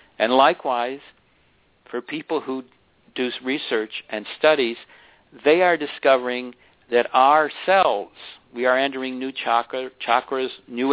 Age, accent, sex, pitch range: 60-79, American, male, 120-140 Hz